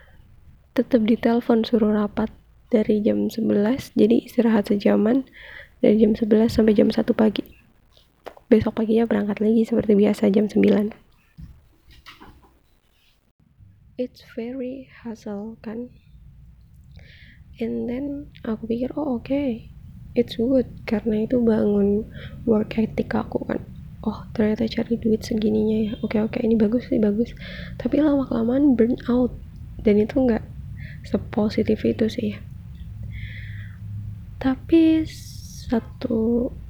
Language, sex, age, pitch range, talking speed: Indonesian, female, 20-39, 215-240 Hz, 115 wpm